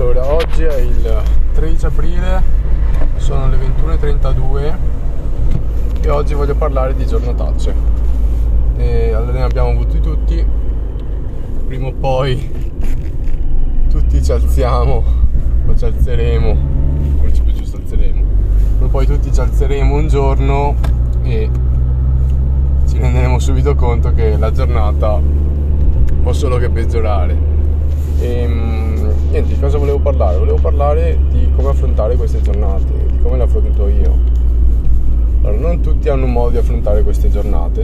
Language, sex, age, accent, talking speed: Italian, male, 20-39, native, 130 wpm